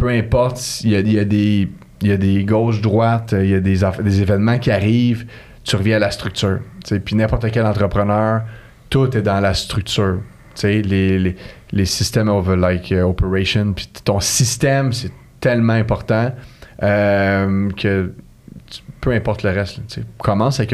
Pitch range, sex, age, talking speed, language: 100-130 Hz, male, 30-49, 175 wpm, French